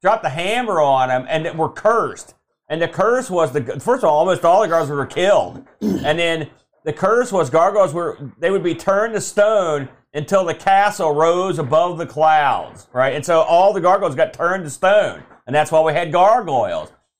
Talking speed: 200 wpm